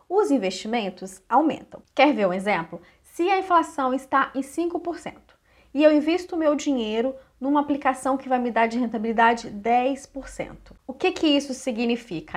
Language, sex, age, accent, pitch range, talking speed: Portuguese, female, 20-39, Brazilian, 215-290 Hz, 160 wpm